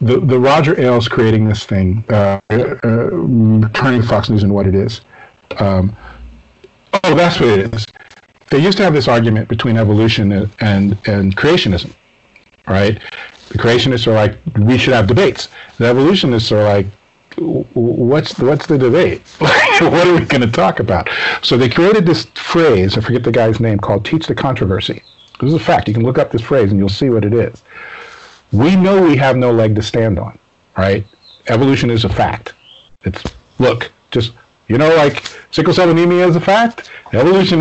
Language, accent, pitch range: English, American, 105-130 Hz